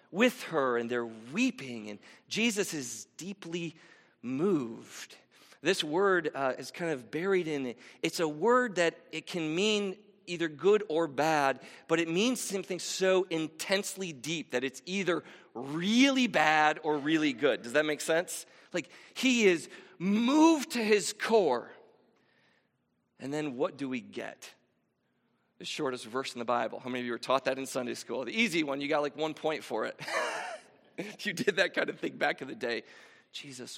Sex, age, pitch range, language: male, 40-59, 135-195 Hz, English